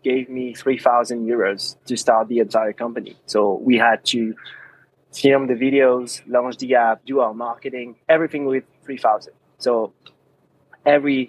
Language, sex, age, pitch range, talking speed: English, male, 20-39, 120-140 Hz, 155 wpm